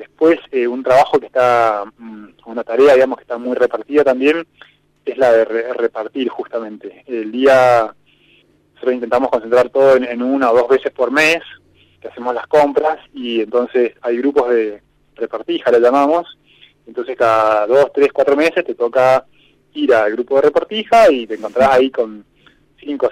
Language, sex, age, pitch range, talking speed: Spanish, male, 20-39, 115-160 Hz, 165 wpm